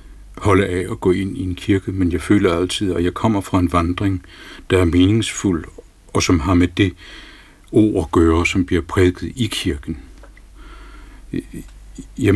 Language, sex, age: Danish, male, 60-79